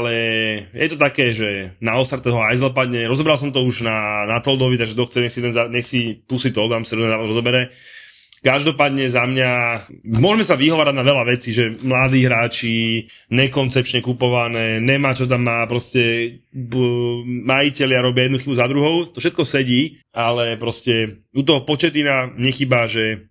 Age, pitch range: 20-39, 115-140 Hz